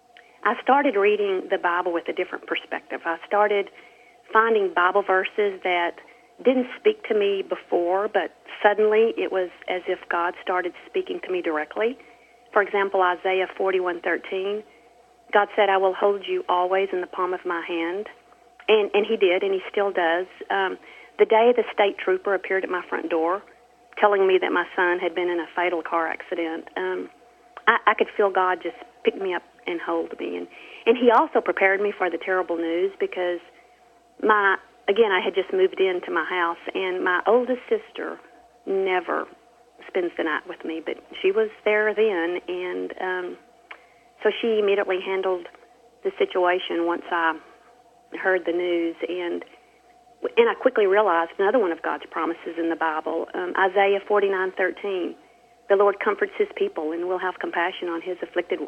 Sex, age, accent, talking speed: female, 40-59, American, 175 wpm